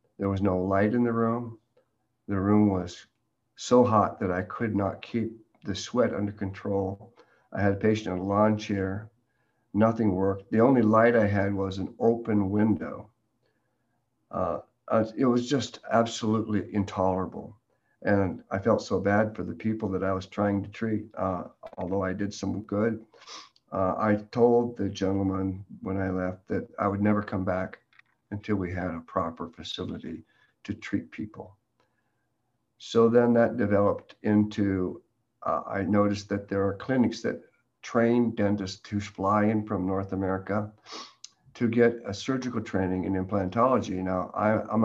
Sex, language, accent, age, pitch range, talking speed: male, English, American, 50-69, 95-110 Hz, 160 wpm